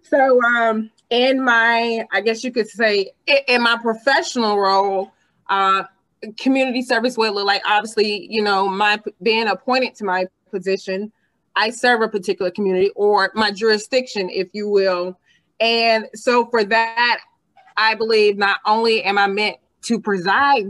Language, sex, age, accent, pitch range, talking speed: English, female, 20-39, American, 195-230 Hz, 150 wpm